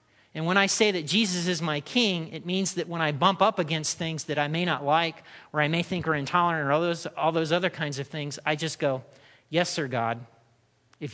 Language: English